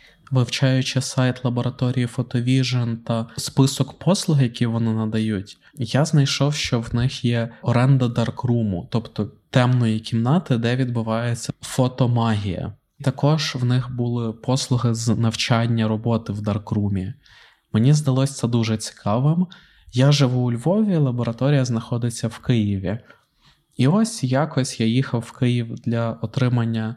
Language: Ukrainian